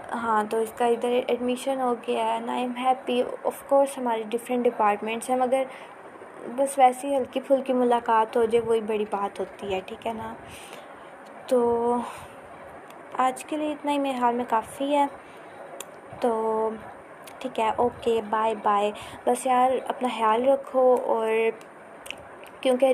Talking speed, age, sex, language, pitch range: 150 wpm, 20-39, female, Urdu, 225-255 Hz